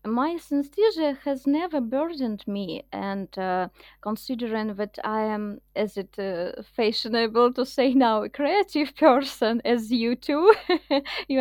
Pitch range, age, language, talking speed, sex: 210-275 Hz, 20-39, English, 135 wpm, female